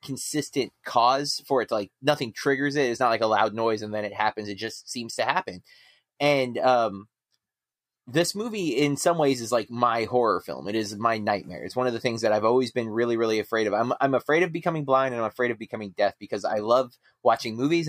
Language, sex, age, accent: English, male, 30-49, American